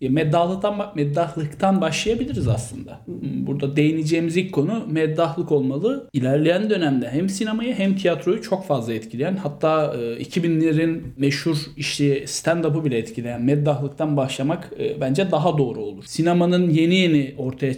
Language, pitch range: Turkish, 140-185 Hz